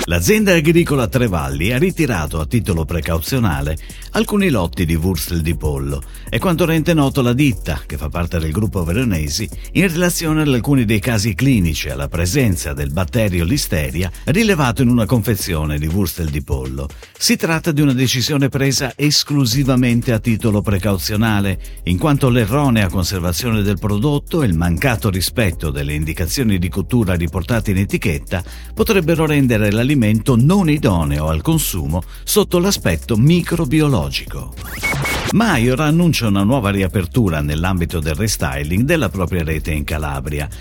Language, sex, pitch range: Italian, male, 85-140 Hz